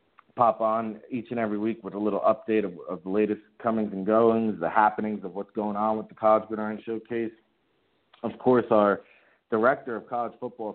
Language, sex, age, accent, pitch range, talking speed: English, male, 50-69, American, 95-115 Hz, 195 wpm